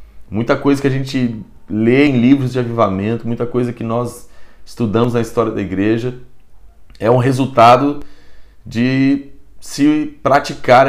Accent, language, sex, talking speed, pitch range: Brazilian, Portuguese, male, 140 wpm, 100-120 Hz